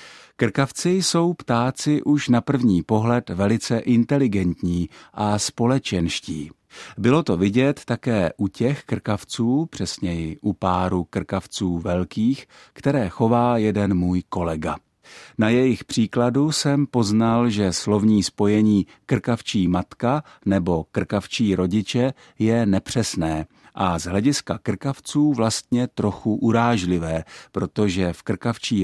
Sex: male